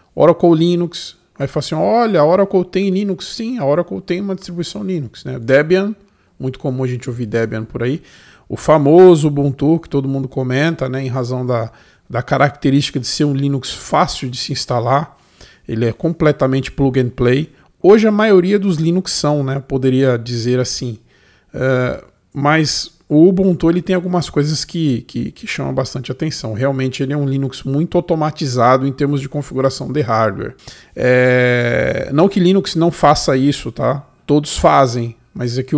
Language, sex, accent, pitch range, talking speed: Portuguese, male, Brazilian, 130-160 Hz, 175 wpm